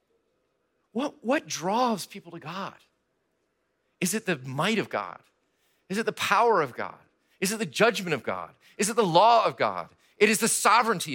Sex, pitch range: male, 135-210 Hz